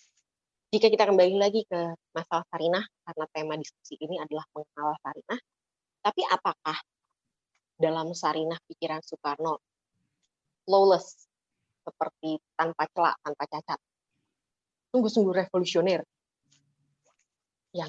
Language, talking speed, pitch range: Indonesian, 95 wpm, 160-195 Hz